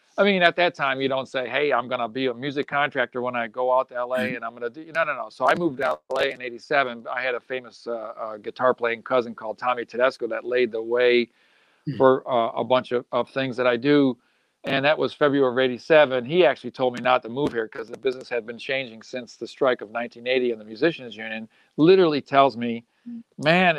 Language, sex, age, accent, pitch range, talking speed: English, male, 40-59, American, 125-160 Hz, 240 wpm